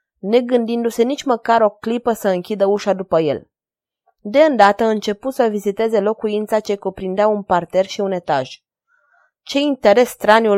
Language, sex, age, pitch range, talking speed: Romanian, female, 20-39, 190-235 Hz, 155 wpm